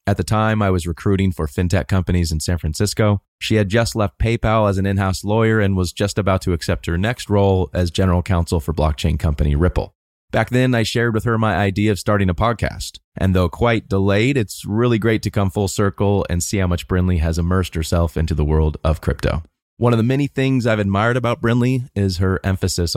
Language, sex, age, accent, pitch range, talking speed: English, male, 30-49, American, 90-110 Hz, 220 wpm